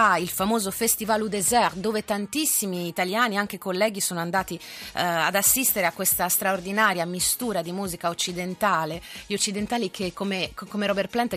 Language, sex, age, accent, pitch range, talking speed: Italian, female, 30-49, native, 165-205 Hz, 155 wpm